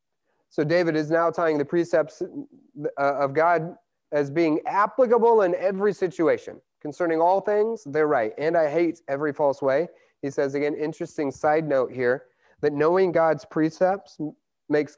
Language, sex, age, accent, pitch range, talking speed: English, male, 30-49, American, 140-190 Hz, 150 wpm